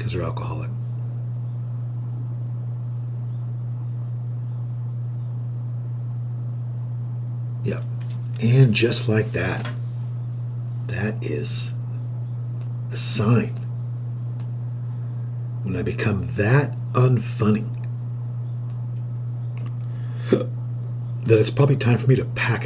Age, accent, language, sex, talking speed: 50-69, American, English, male, 65 wpm